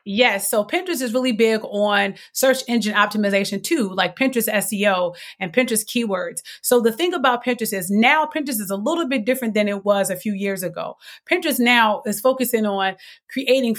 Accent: American